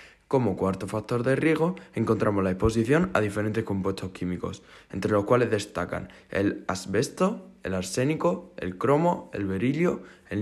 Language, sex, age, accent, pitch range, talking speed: Spanish, male, 20-39, Spanish, 95-125 Hz, 145 wpm